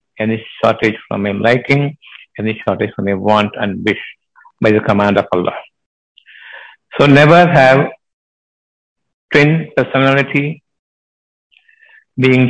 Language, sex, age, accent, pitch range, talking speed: Tamil, male, 50-69, native, 110-140 Hz, 120 wpm